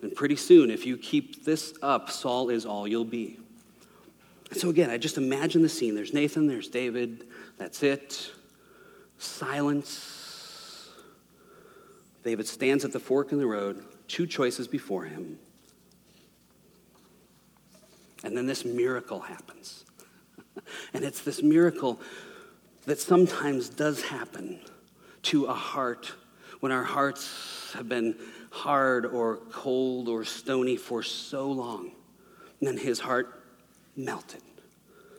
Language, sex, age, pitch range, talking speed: English, male, 40-59, 125-180 Hz, 125 wpm